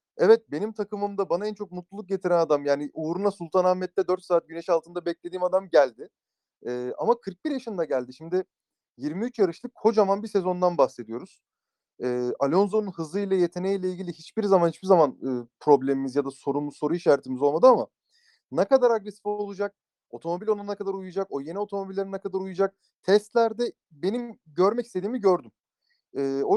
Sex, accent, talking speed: male, native, 160 wpm